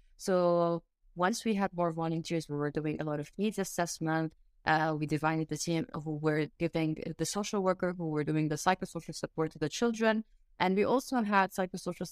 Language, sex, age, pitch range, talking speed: English, female, 20-39, 160-190 Hz, 195 wpm